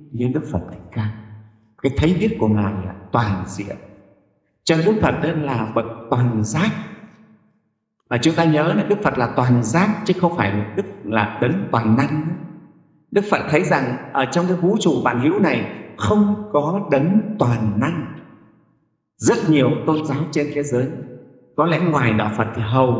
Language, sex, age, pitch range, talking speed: Vietnamese, male, 60-79, 110-165 Hz, 175 wpm